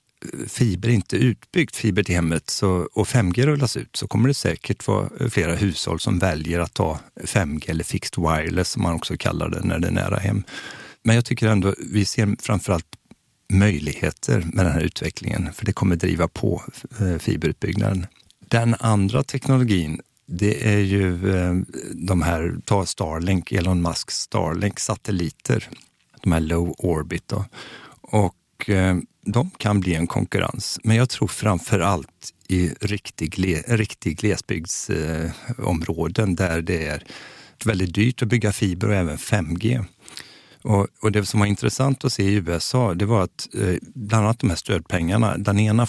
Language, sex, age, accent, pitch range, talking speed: Swedish, male, 50-69, native, 85-110 Hz, 160 wpm